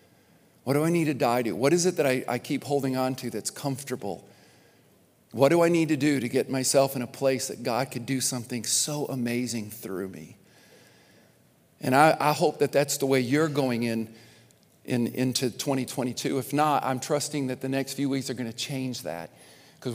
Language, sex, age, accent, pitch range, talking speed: English, male, 50-69, American, 125-150 Hz, 210 wpm